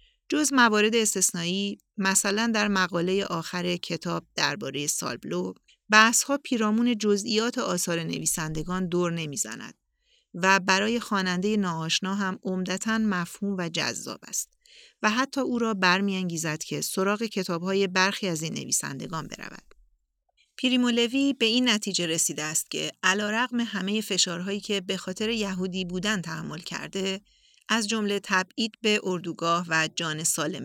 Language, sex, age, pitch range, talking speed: Persian, female, 40-59, 170-215 Hz, 130 wpm